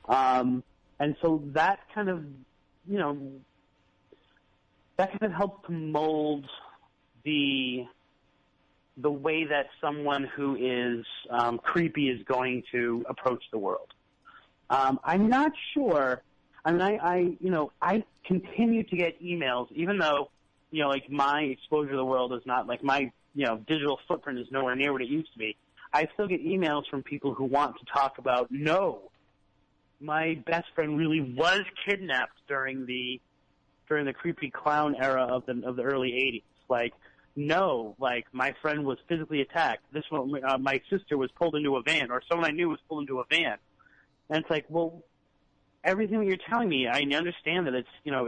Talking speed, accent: 175 wpm, American